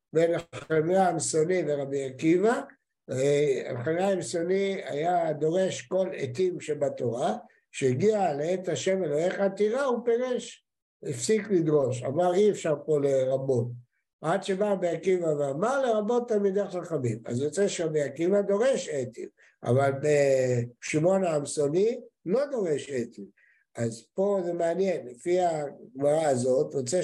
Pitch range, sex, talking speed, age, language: 135-190 Hz, male, 120 wpm, 60-79, Hebrew